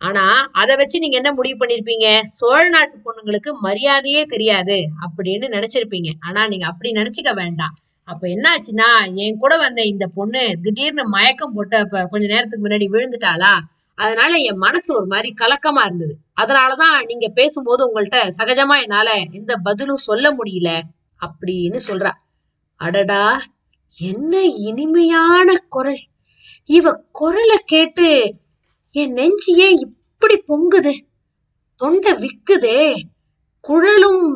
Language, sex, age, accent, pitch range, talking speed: Tamil, female, 20-39, native, 215-345 Hz, 115 wpm